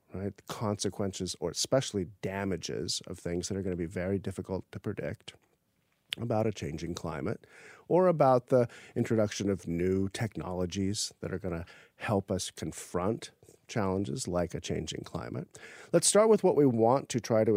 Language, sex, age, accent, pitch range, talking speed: English, male, 40-59, American, 95-120 Hz, 165 wpm